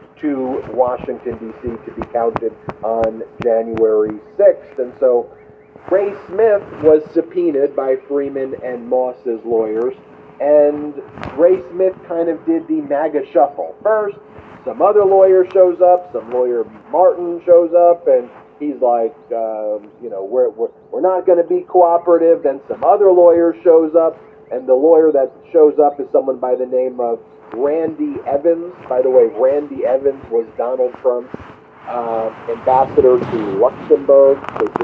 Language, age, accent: English, 40-59, American